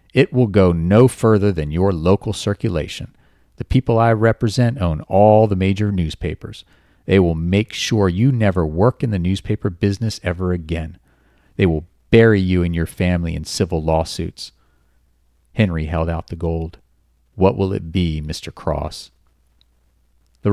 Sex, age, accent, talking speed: male, 40-59, American, 155 wpm